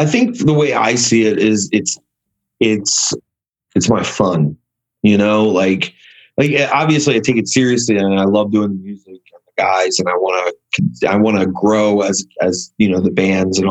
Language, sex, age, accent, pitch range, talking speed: English, male, 30-49, American, 95-115 Hz, 200 wpm